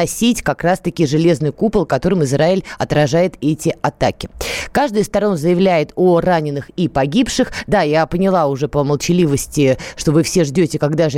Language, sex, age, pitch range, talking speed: Russian, female, 20-39, 150-210 Hz, 165 wpm